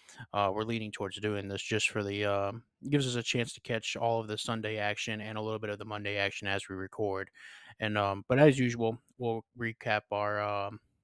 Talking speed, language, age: 225 wpm, English, 20-39